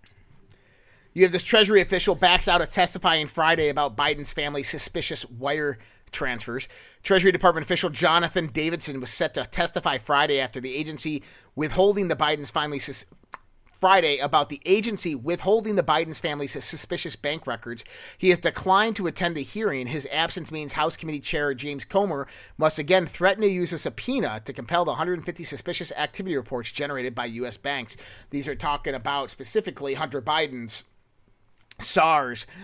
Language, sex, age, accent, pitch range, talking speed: English, male, 30-49, American, 140-175 Hz, 160 wpm